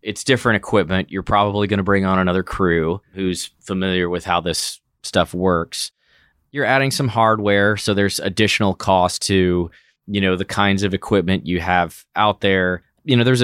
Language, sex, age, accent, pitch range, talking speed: English, male, 30-49, American, 90-115 Hz, 180 wpm